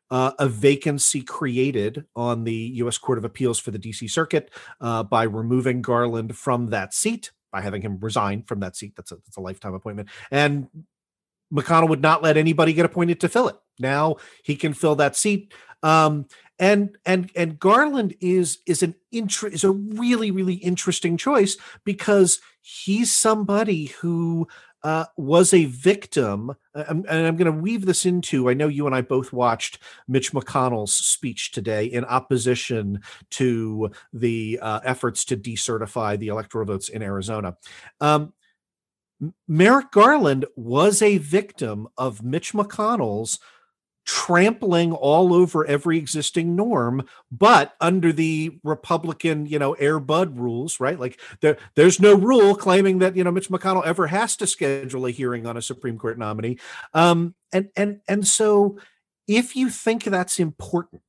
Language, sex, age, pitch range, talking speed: English, male, 40-59, 125-185 Hz, 160 wpm